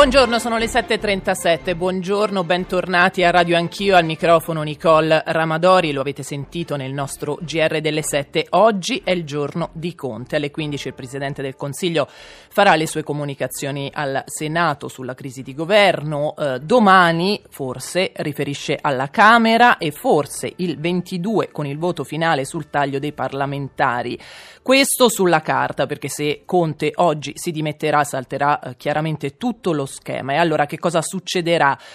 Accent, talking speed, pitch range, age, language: native, 150 wpm, 145-175 Hz, 30-49, Italian